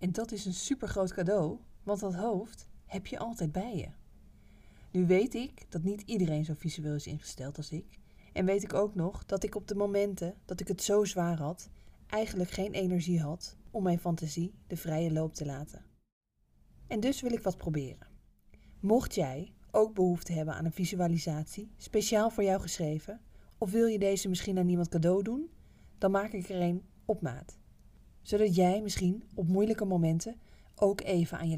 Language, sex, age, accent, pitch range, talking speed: Dutch, female, 20-39, Dutch, 160-200 Hz, 190 wpm